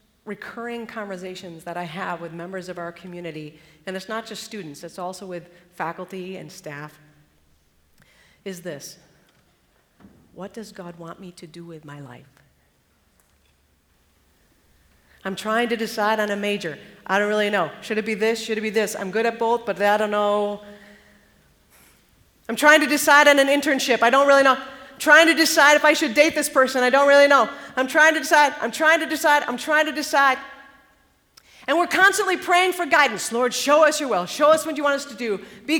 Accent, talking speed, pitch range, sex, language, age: American, 195 wpm, 190-315 Hz, female, English, 40-59